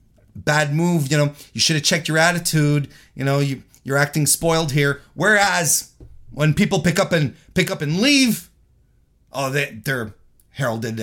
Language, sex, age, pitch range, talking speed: English, male, 30-49, 105-165 Hz, 170 wpm